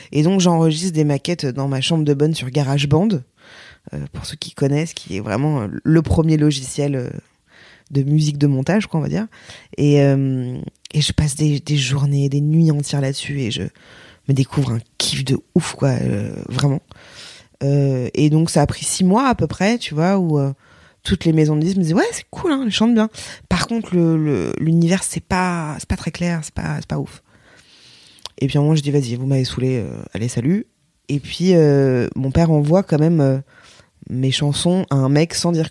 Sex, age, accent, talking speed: female, 20-39, French, 215 wpm